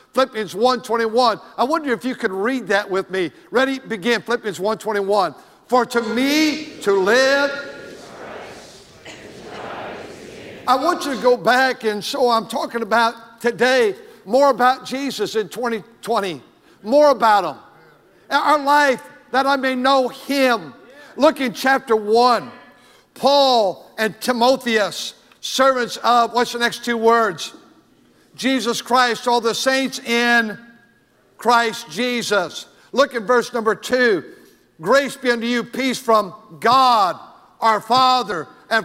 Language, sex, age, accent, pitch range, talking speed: English, male, 50-69, American, 225-260 Hz, 130 wpm